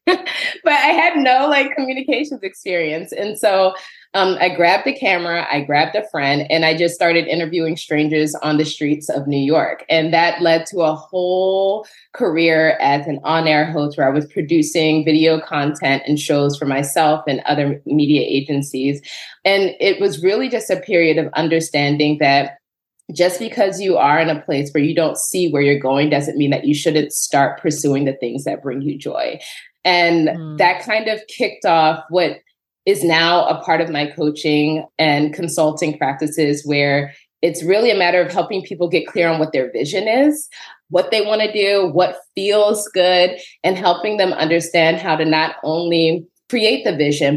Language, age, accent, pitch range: English, 20-39, American, 150-180 Hz